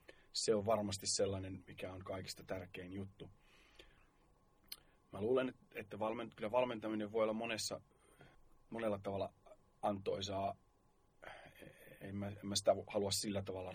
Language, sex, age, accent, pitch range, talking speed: Finnish, male, 30-49, native, 95-105 Hz, 120 wpm